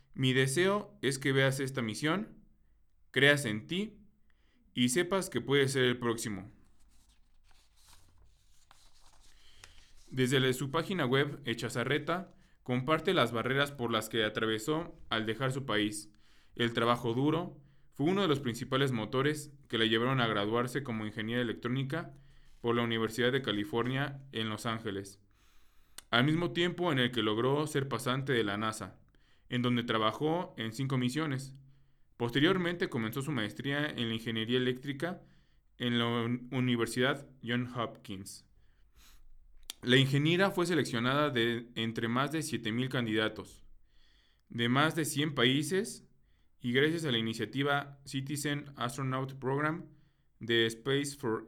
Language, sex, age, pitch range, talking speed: Spanish, male, 20-39, 110-140 Hz, 135 wpm